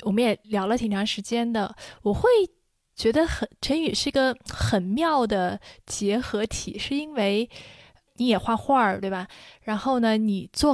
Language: Chinese